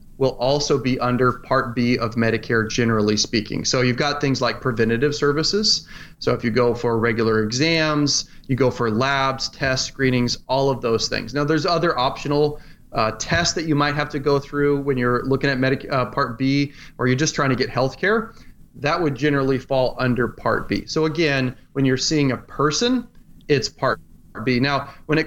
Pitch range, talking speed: 120-145 Hz, 195 wpm